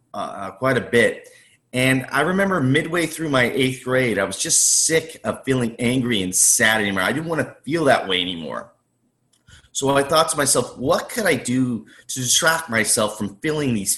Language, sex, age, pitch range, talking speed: English, male, 30-49, 110-140 Hz, 195 wpm